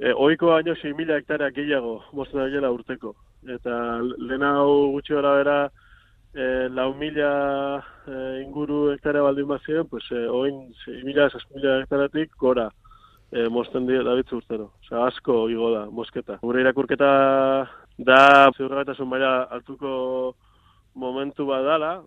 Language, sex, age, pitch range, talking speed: Spanish, male, 20-39, 120-140 Hz, 95 wpm